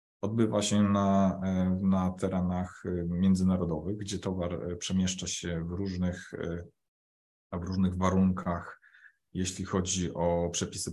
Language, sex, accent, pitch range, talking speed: Polish, male, native, 85-100 Hz, 105 wpm